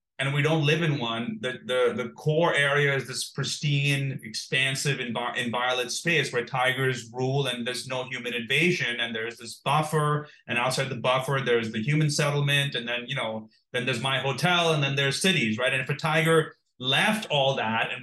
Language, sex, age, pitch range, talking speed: English, male, 30-49, 130-160 Hz, 195 wpm